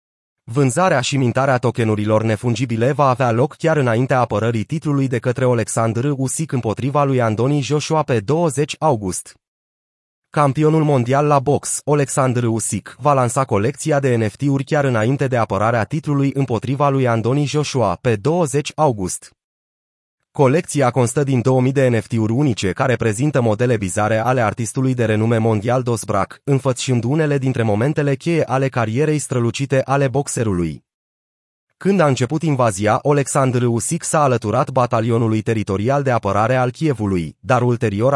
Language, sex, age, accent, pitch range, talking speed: Romanian, male, 30-49, native, 115-145 Hz, 140 wpm